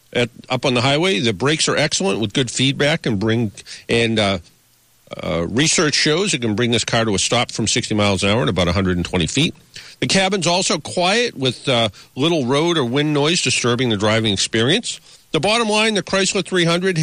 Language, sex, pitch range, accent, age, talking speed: English, male, 120-170 Hz, American, 50-69, 200 wpm